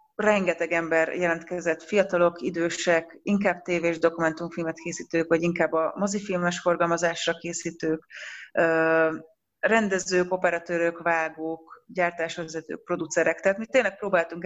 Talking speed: 100 wpm